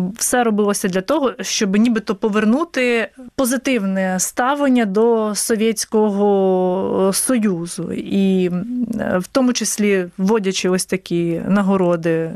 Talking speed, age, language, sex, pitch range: 95 wpm, 20-39, Ukrainian, female, 190-235 Hz